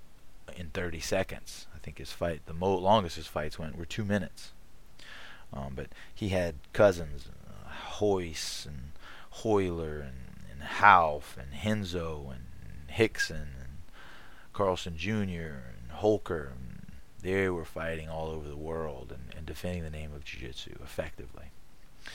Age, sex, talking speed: 30-49, male, 145 wpm